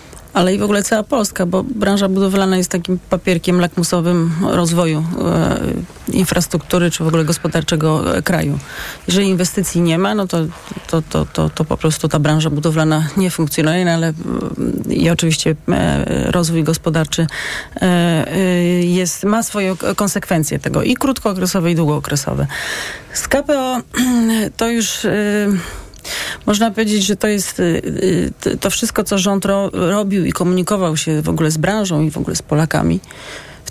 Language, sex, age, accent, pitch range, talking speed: Polish, female, 30-49, native, 165-200 Hz, 150 wpm